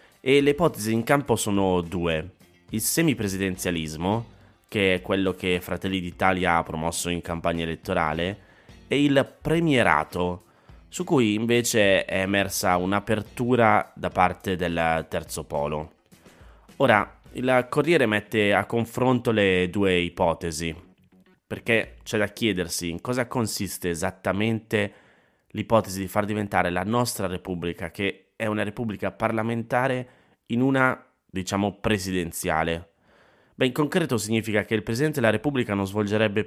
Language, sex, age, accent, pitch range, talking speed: Italian, male, 30-49, native, 90-115 Hz, 130 wpm